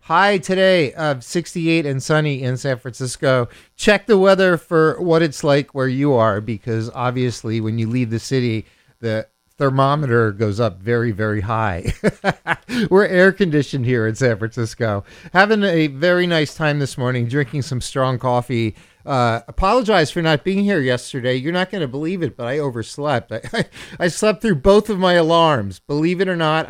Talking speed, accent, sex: 175 wpm, American, male